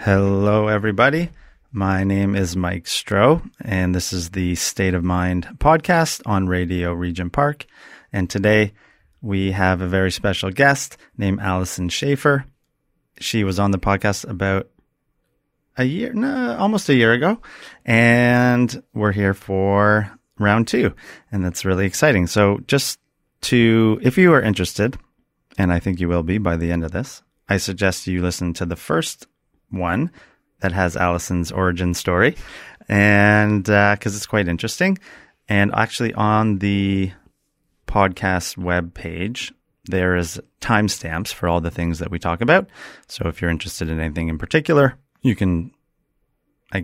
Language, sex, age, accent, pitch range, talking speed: English, male, 30-49, American, 90-115 Hz, 150 wpm